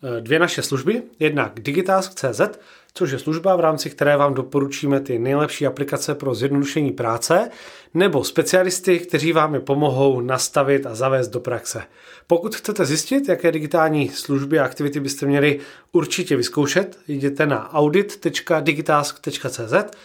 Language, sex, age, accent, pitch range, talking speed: Czech, male, 30-49, native, 140-170 Hz, 135 wpm